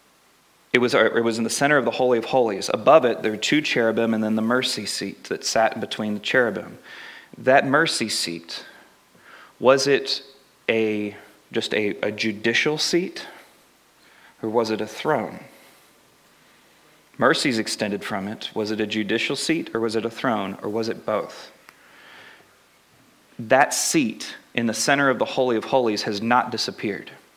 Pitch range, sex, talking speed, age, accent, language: 110-130 Hz, male, 165 wpm, 30-49, American, English